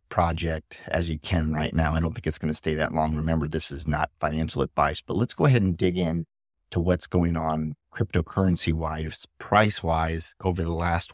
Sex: male